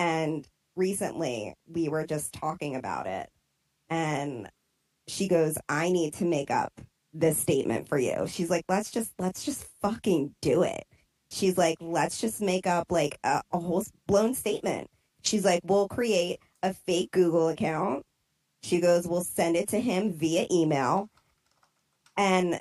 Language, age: English, 20-39